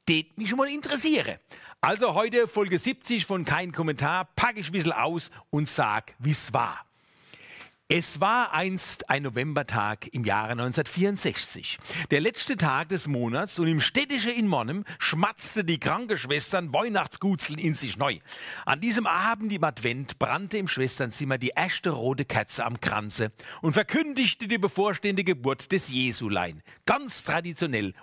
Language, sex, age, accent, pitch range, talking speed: German, male, 40-59, German, 135-200 Hz, 150 wpm